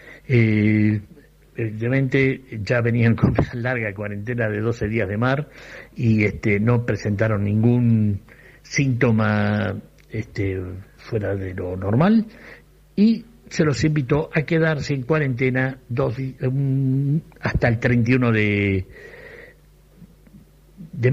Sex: male